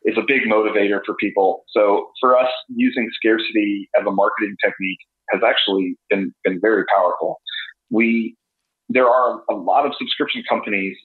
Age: 40-59